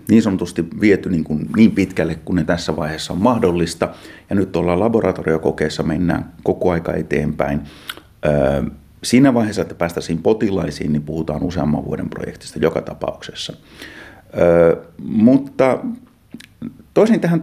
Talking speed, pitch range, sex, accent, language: 130 wpm, 85-115 Hz, male, native, Finnish